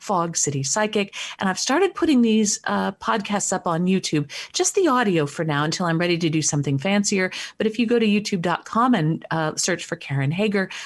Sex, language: female, English